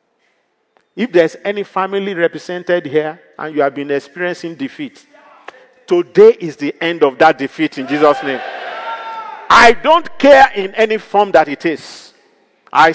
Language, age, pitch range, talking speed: English, 50-69, 130-205 Hz, 150 wpm